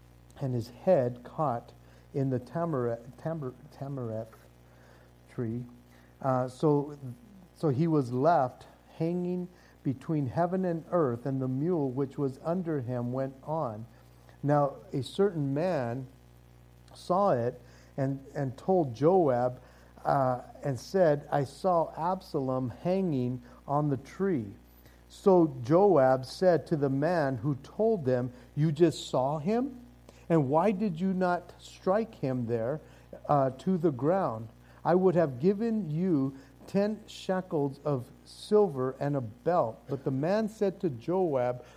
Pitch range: 125-175 Hz